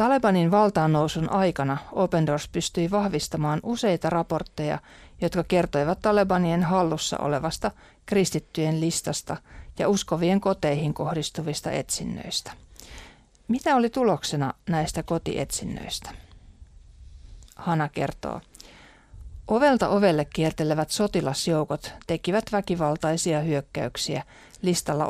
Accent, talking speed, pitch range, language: native, 85 wpm, 150-190 Hz, Finnish